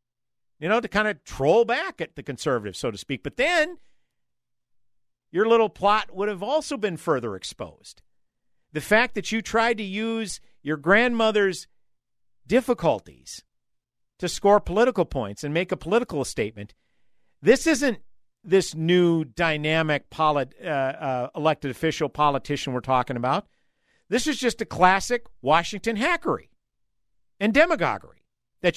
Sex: male